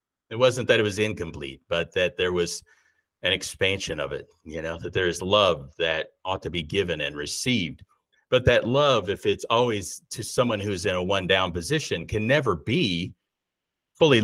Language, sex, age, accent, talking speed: English, male, 50-69, American, 190 wpm